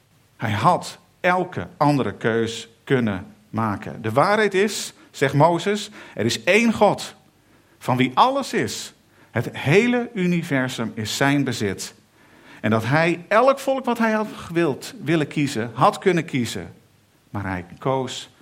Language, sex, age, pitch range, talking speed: Dutch, male, 50-69, 110-170 Hz, 135 wpm